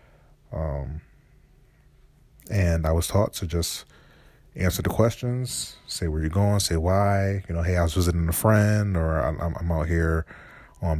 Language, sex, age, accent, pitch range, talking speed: English, male, 30-49, American, 85-100 Hz, 165 wpm